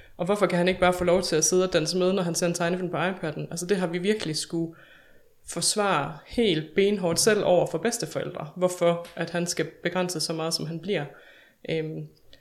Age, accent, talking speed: 20-39, native, 220 wpm